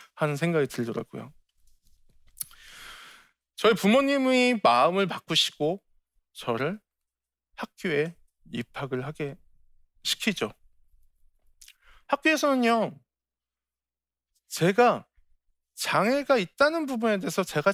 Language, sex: Korean, male